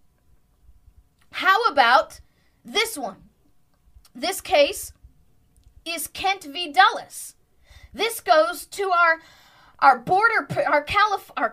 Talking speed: 95 wpm